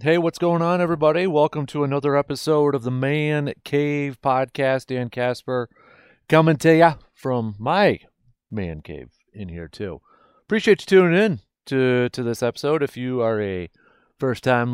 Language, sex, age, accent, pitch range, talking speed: English, male, 30-49, American, 110-150 Hz, 160 wpm